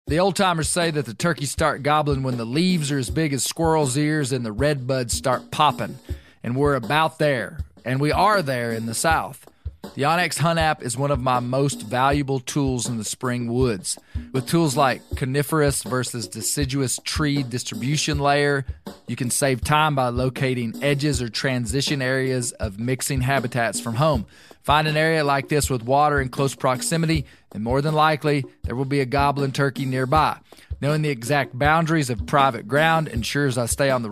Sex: male